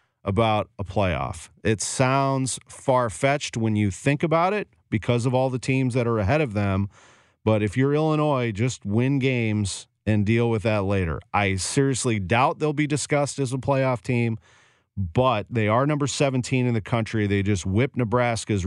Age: 40-59